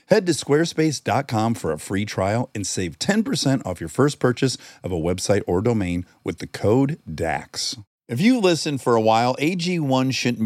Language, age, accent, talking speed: English, 50-69, American, 180 wpm